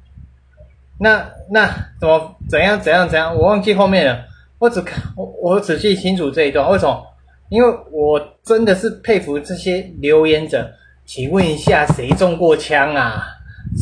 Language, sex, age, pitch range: Chinese, male, 20-39, 130-200 Hz